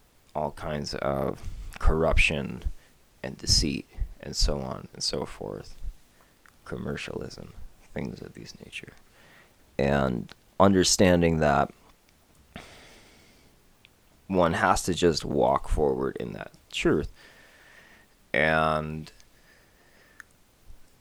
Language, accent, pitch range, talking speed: English, American, 75-90 Hz, 85 wpm